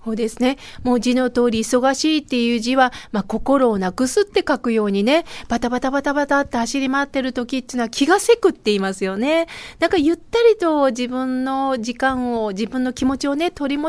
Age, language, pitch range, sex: 40-59, Japanese, 240-345 Hz, female